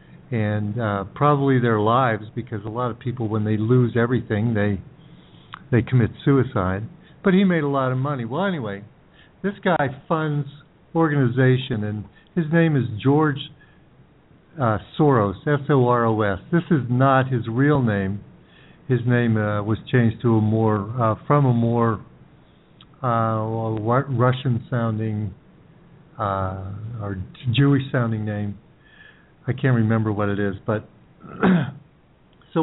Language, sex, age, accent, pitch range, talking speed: English, male, 60-79, American, 115-145 Hz, 140 wpm